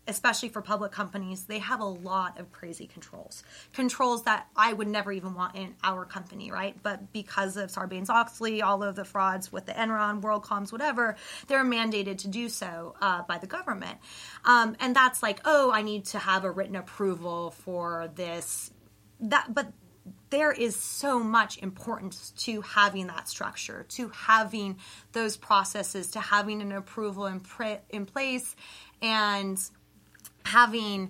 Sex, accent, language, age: female, American, English, 20-39